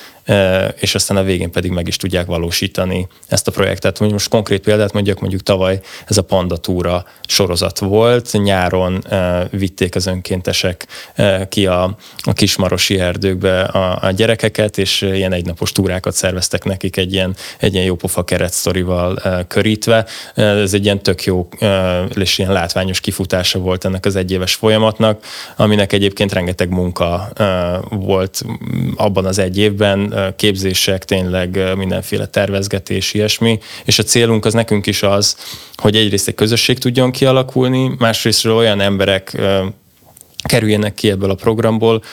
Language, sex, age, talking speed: Hungarian, male, 20-39, 135 wpm